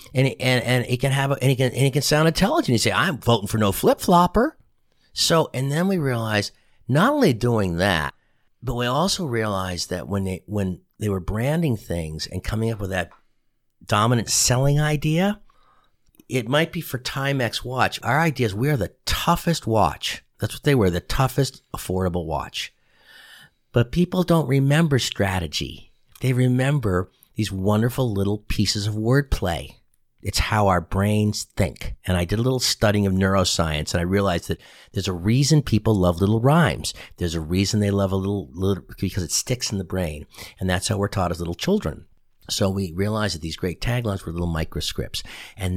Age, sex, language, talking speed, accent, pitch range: 50-69, male, English, 190 wpm, American, 95-130 Hz